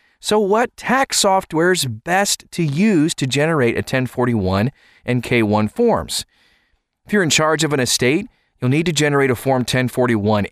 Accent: American